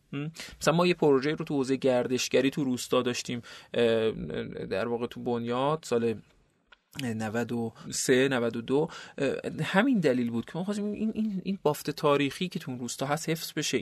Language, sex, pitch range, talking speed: Persian, male, 125-165 Hz, 155 wpm